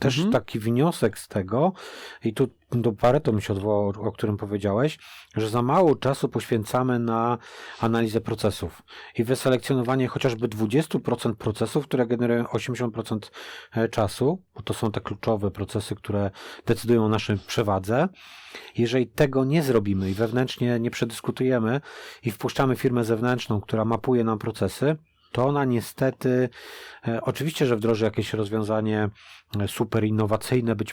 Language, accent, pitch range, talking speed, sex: Polish, native, 110-130 Hz, 135 wpm, male